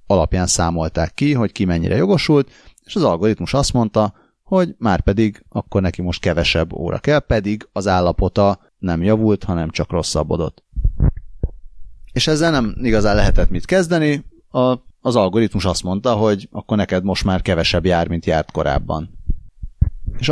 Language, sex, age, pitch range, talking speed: Hungarian, male, 30-49, 90-110 Hz, 155 wpm